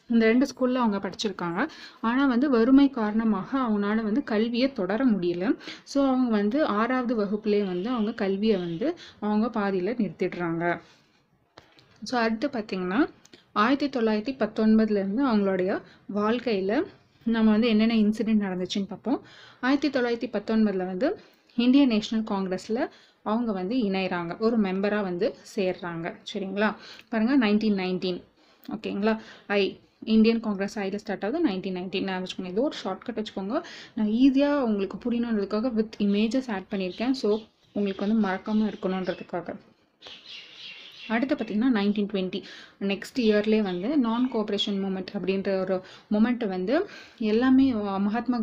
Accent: native